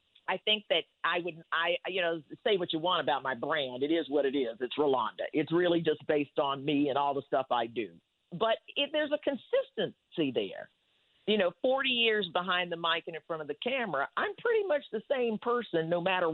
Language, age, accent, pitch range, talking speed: English, 50-69, American, 155-220 Hz, 225 wpm